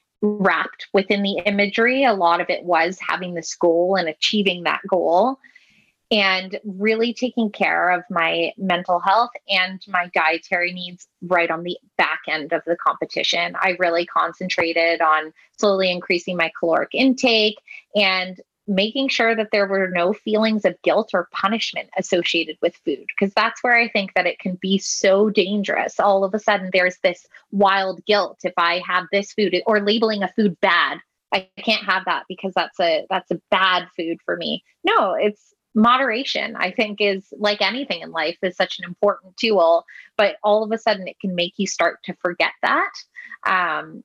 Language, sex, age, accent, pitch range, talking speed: English, female, 20-39, American, 180-215 Hz, 180 wpm